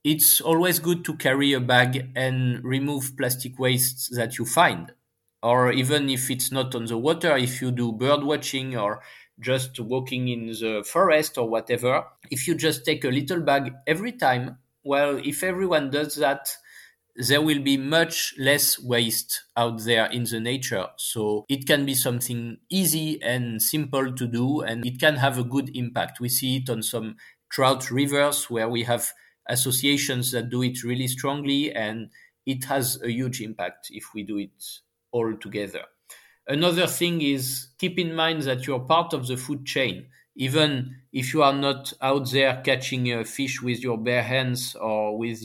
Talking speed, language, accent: 175 wpm, English, French